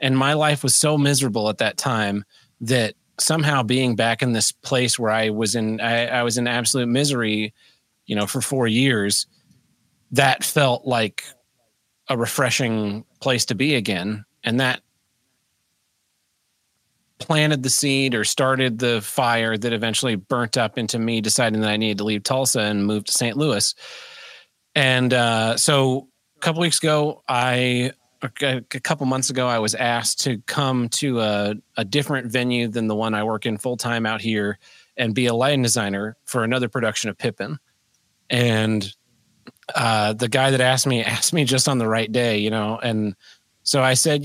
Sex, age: male, 30-49